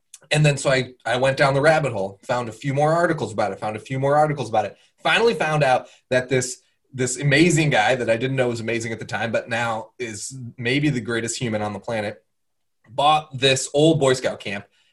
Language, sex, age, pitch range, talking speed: English, male, 20-39, 115-145 Hz, 230 wpm